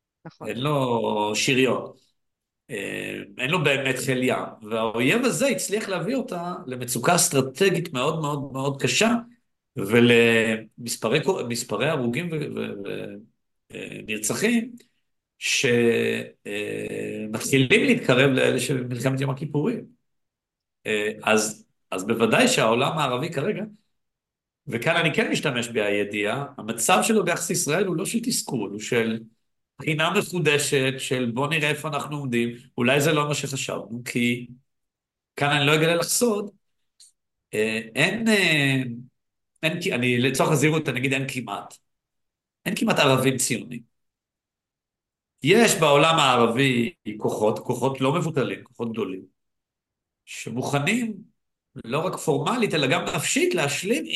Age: 50-69